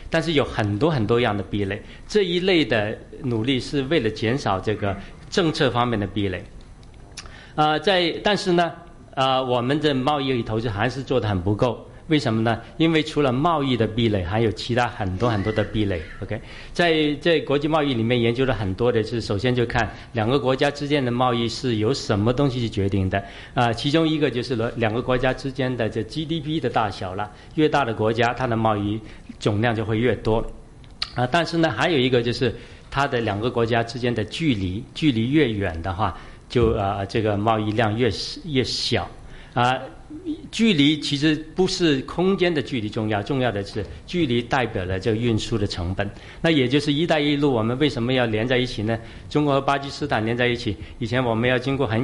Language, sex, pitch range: Chinese, male, 110-140 Hz